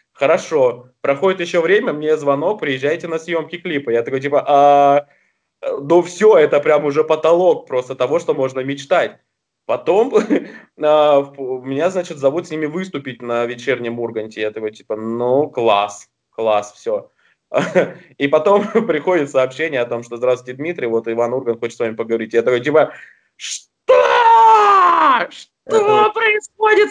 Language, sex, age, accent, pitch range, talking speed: Russian, male, 20-39, native, 115-175 Hz, 145 wpm